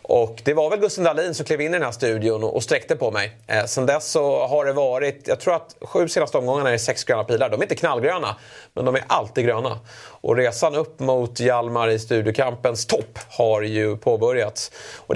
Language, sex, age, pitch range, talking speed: Swedish, male, 30-49, 115-165 Hz, 220 wpm